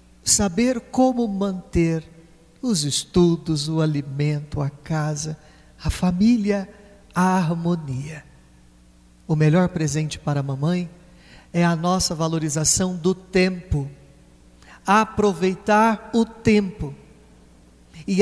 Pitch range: 130-205 Hz